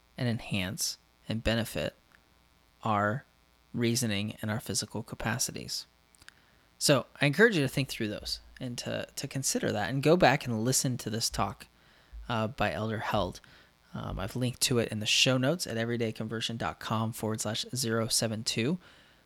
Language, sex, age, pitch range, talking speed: English, male, 20-39, 80-130 Hz, 155 wpm